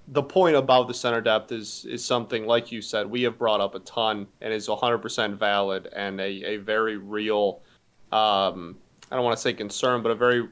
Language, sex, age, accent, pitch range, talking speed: English, male, 20-39, American, 110-130 Hz, 210 wpm